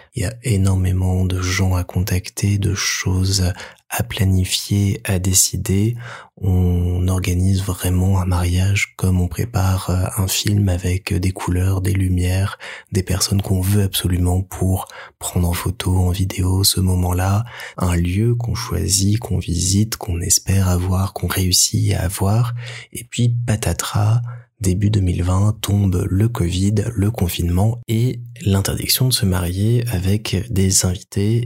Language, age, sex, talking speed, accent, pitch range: French, 20-39, male, 140 wpm, French, 95-110 Hz